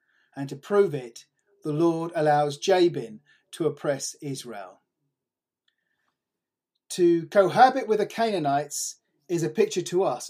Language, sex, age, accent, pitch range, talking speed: English, male, 40-59, British, 145-190 Hz, 120 wpm